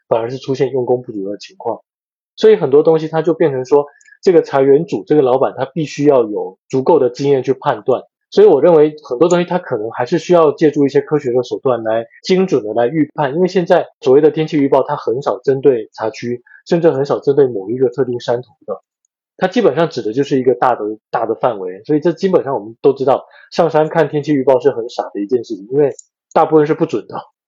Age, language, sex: 20-39, Chinese, male